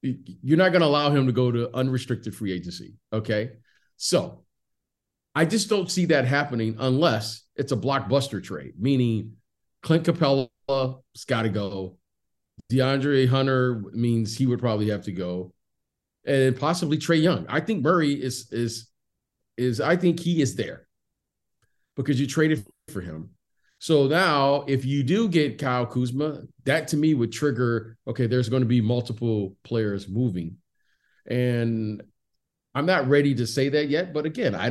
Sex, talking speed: male, 160 wpm